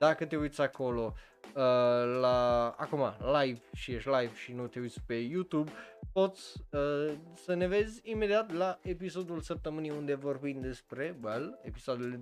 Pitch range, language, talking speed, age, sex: 130-180 Hz, Romanian, 150 wpm, 20-39, male